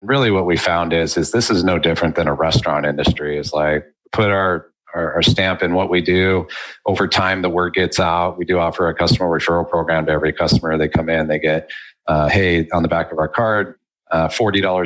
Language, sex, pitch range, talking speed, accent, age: English, male, 80-95 Hz, 220 wpm, American, 40-59